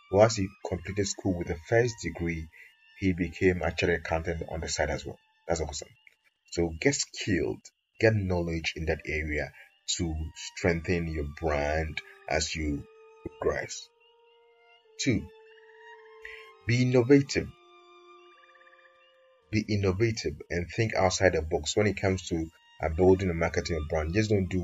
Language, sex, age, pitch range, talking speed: English, male, 30-49, 85-115 Hz, 135 wpm